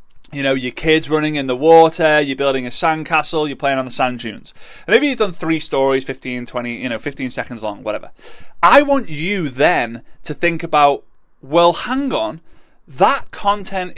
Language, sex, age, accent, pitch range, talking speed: English, male, 30-49, British, 140-210 Hz, 190 wpm